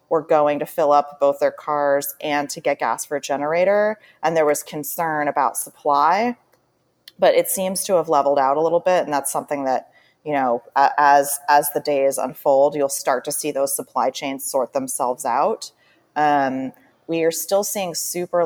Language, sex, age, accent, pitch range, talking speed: English, female, 30-49, American, 140-185 Hz, 190 wpm